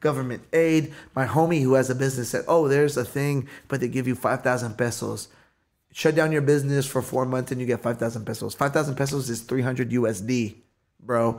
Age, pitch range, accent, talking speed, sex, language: 20-39, 115-145 Hz, American, 195 wpm, male, English